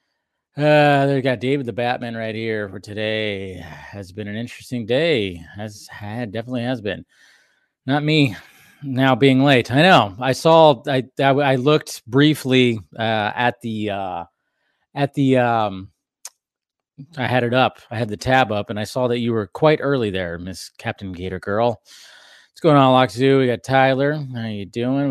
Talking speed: 175 wpm